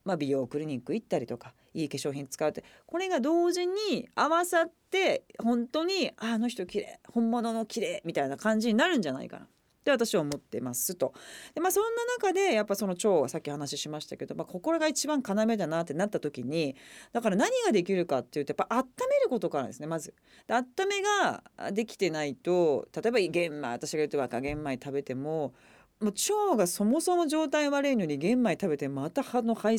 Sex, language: female, Japanese